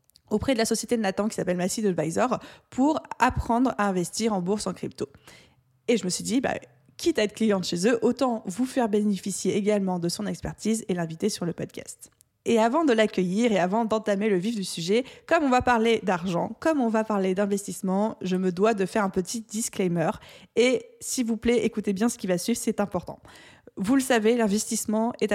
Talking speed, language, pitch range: 210 wpm, French, 190-230 Hz